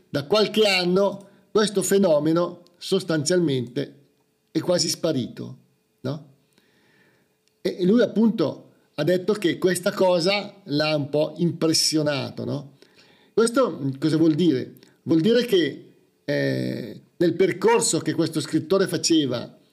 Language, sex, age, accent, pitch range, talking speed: Italian, male, 50-69, native, 145-190 Hz, 115 wpm